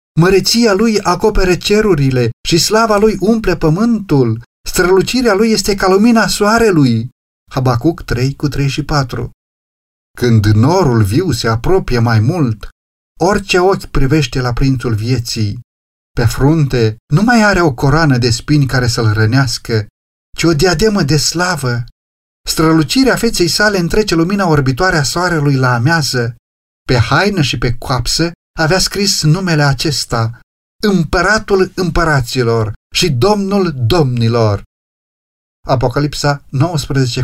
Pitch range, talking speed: 120-180 Hz, 120 wpm